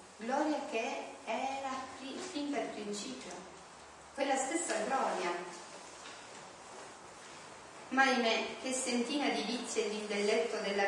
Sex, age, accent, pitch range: female, 30-49, native, 200-235 Hz